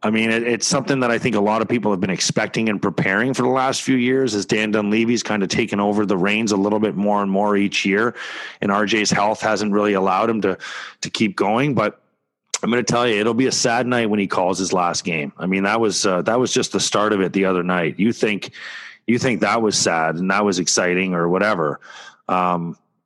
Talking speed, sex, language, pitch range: 250 wpm, male, English, 100-125 Hz